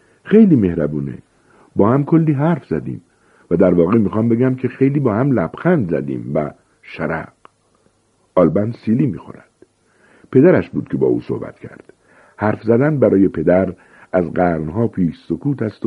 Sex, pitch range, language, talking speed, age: male, 90-125 Hz, Persian, 150 wpm, 50-69